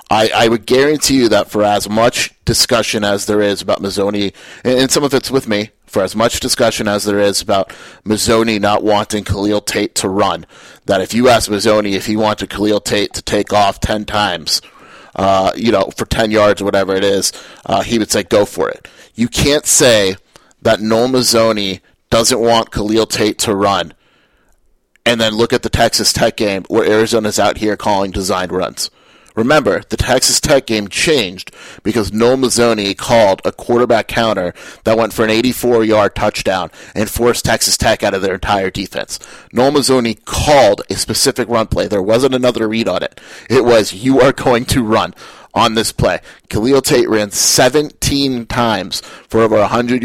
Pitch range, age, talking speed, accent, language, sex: 105-120 Hz, 30-49, 185 wpm, American, English, male